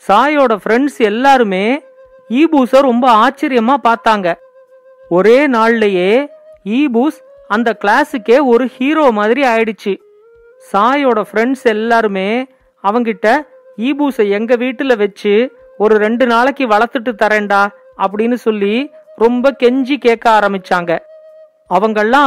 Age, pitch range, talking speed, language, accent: 40-59, 220-280 Hz, 95 wpm, Tamil, native